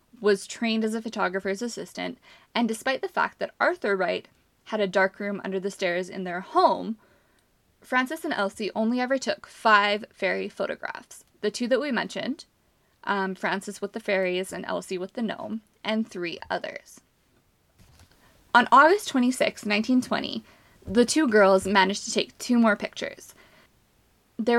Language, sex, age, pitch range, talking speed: English, female, 20-39, 195-240 Hz, 155 wpm